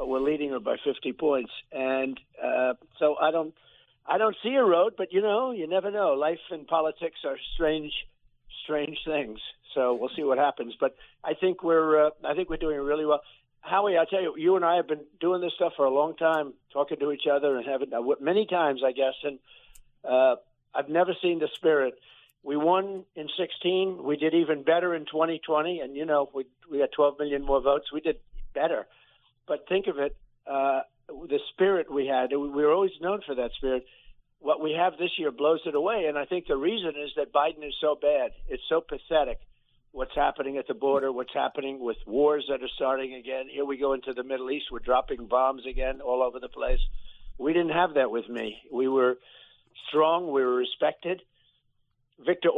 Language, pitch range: English, 135-170 Hz